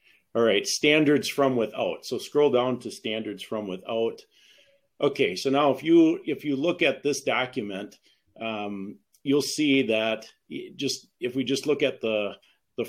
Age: 40-59